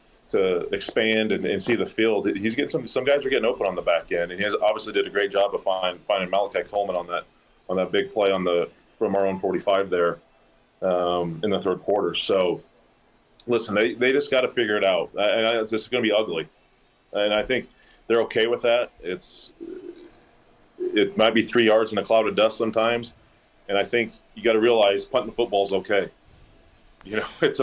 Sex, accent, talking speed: male, American, 215 wpm